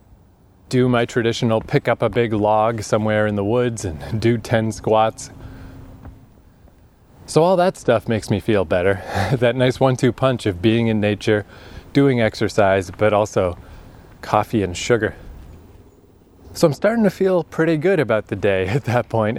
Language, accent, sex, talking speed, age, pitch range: English, American, male, 160 wpm, 20-39, 100-130 Hz